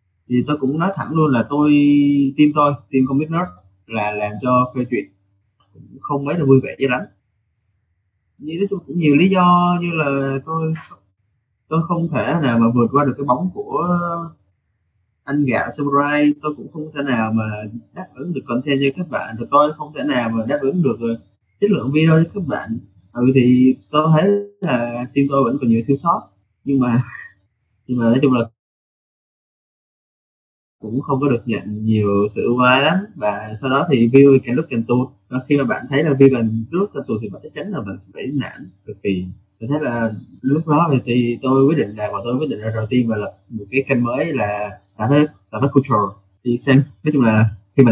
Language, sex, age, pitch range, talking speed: Vietnamese, male, 20-39, 110-145 Hz, 210 wpm